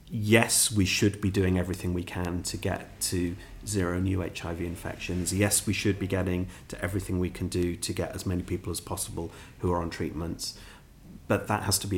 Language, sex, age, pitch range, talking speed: Arabic, male, 30-49, 90-100 Hz, 205 wpm